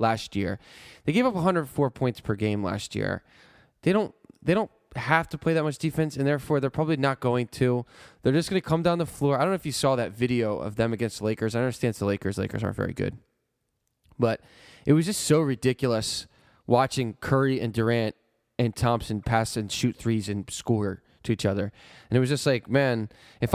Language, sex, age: English, male, 10-29